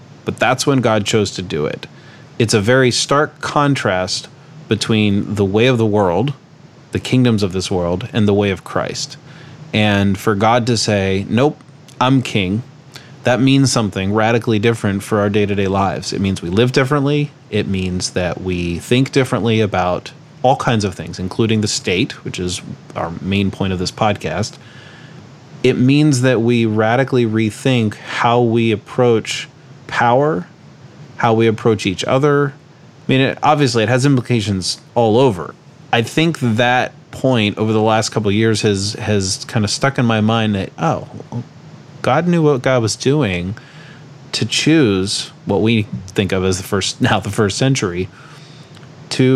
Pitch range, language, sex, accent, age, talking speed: 105-140 Hz, English, male, American, 30-49, 165 wpm